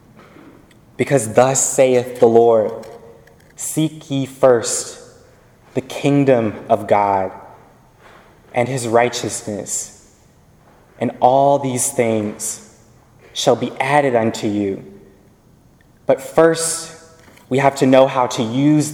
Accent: American